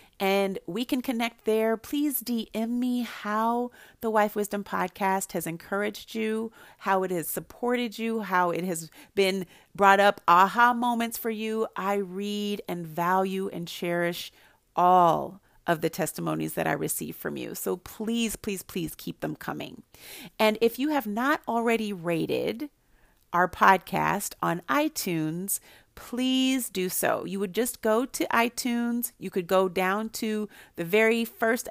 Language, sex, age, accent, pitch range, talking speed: English, female, 40-59, American, 180-225 Hz, 155 wpm